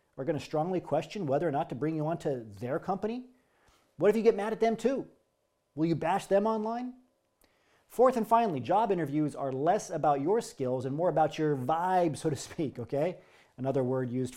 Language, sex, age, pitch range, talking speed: English, male, 40-59, 140-200 Hz, 210 wpm